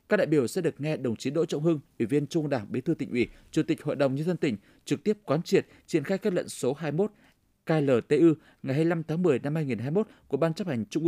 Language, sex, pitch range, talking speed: Vietnamese, male, 135-170 Hz, 260 wpm